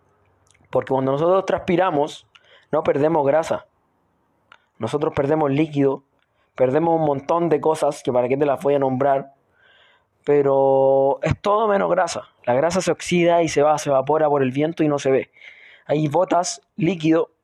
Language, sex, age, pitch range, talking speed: Spanish, male, 20-39, 140-170 Hz, 160 wpm